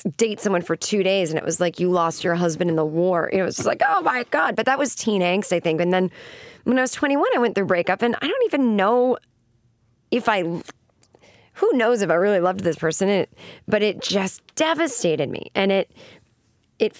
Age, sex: 30-49, female